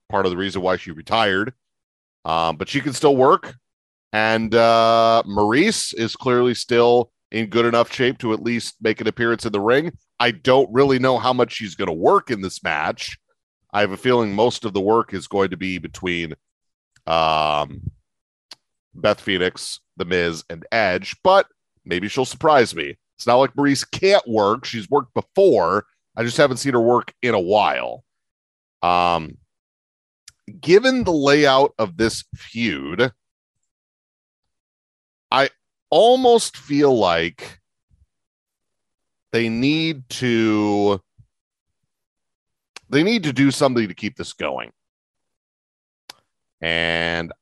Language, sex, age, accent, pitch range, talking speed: English, male, 40-59, American, 85-120 Hz, 140 wpm